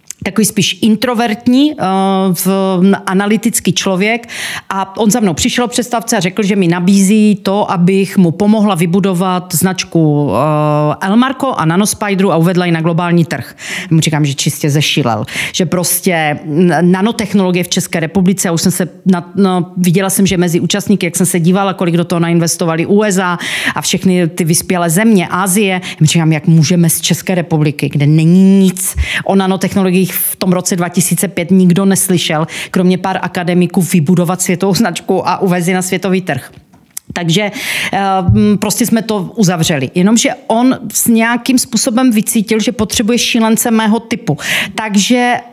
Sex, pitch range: female, 175-210 Hz